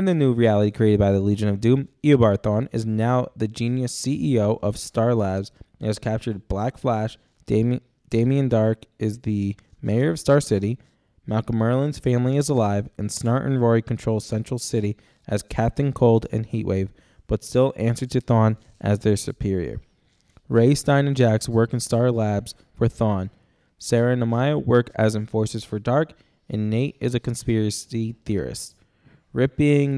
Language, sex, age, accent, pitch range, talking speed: English, male, 20-39, American, 105-125 Hz, 165 wpm